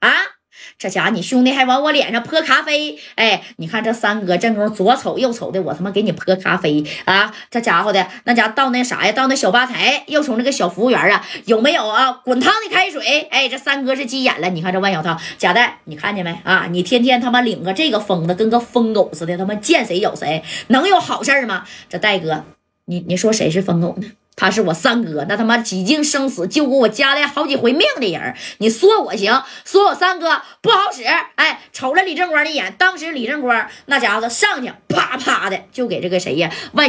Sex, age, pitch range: female, 20-39, 200-280 Hz